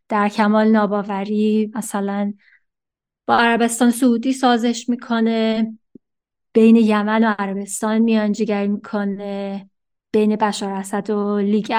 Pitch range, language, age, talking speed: 205-230 Hz, Persian, 20-39, 100 wpm